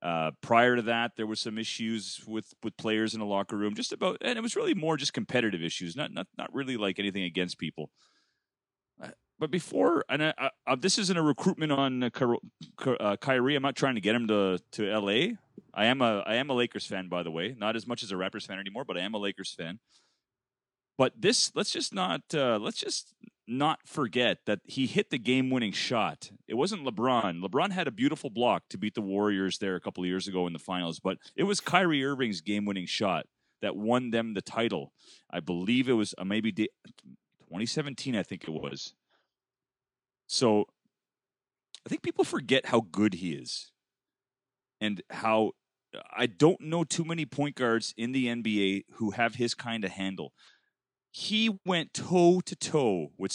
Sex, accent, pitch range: male, American, 100-140 Hz